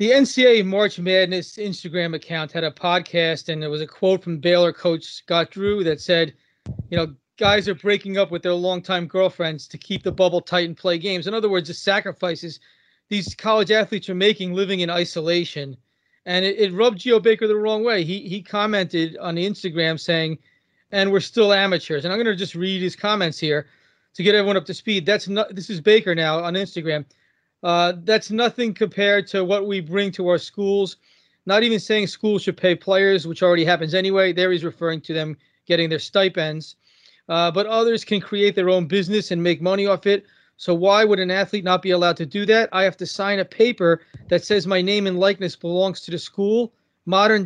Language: English